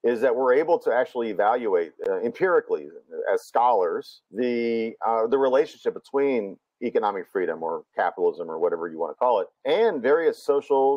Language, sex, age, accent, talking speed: English, male, 50-69, American, 165 wpm